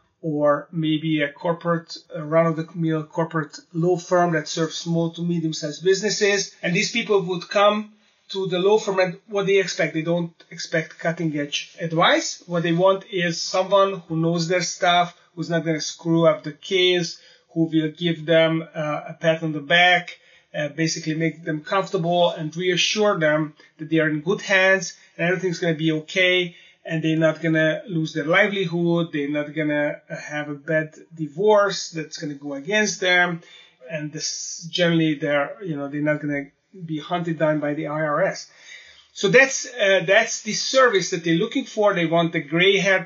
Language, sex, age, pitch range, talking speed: English, male, 30-49, 160-190 Hz, 185 wpm